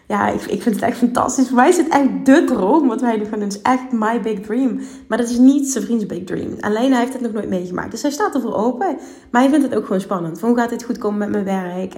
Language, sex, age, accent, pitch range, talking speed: Dutch, female, 20-39, Dutch, 200-250 Hz, 295 wpm